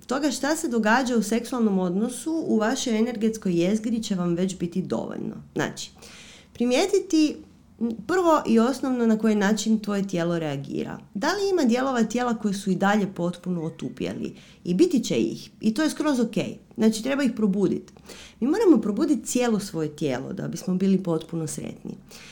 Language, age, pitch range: Croatian, 30-49, 190-240 Hz